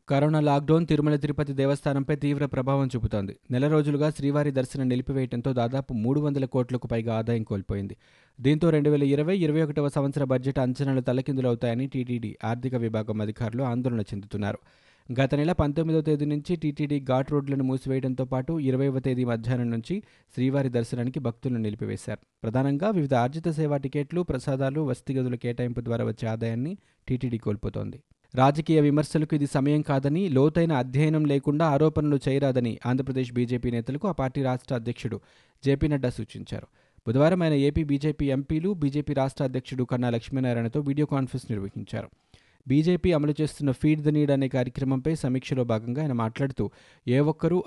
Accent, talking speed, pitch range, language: native, 135 wpm, 120-145 Hz, Telugu